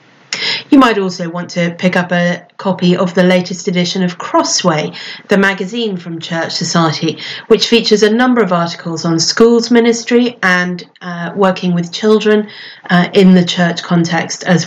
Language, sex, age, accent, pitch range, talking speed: English, female, 40-59, British, 175-215 Hz, 165 wpm